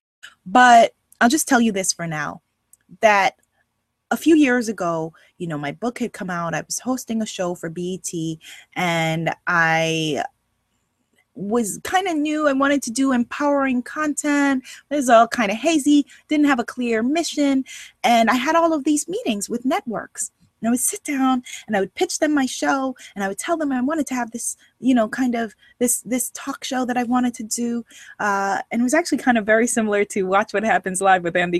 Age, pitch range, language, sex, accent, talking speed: 20-39, 195-280 Hz, English, female, American, 210 wpm